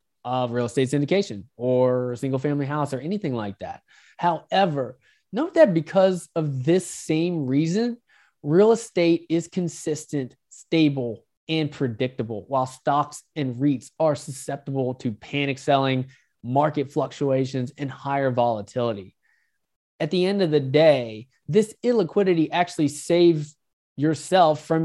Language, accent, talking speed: English, American, 130 wpm